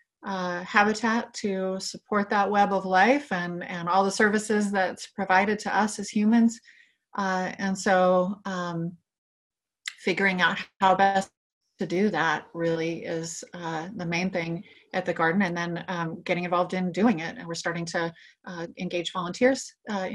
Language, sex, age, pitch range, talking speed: English, female, 30-49, 180-215 Hz, 165 wpm